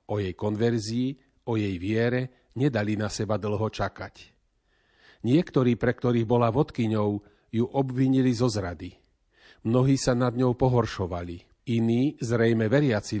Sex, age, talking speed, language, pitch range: male, 40-59, 125 wpm, Slovak, 110-135 Hz